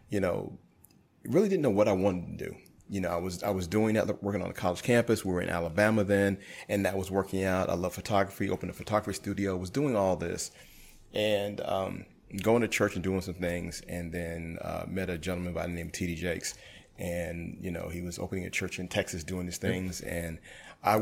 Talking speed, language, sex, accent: 225 wpm, English, male, American